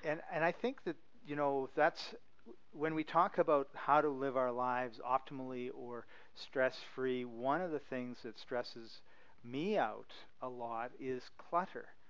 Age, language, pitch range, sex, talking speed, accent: 50-69, English, 120-135 Hz, male, 165 wpm, American